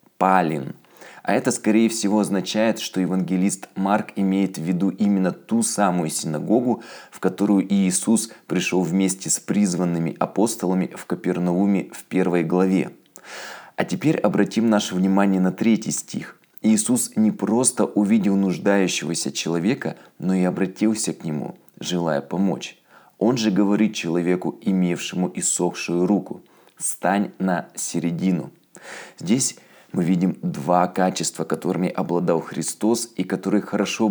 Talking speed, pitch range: 125 wpm, 90-105 Hz